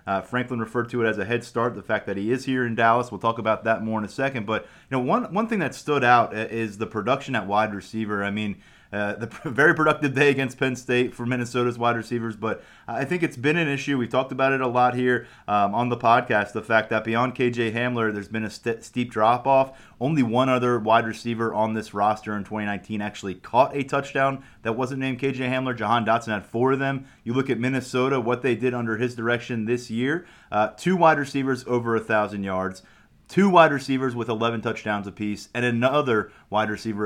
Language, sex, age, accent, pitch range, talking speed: English, male, 30-49, American, 110-130 Hz, 225 wpm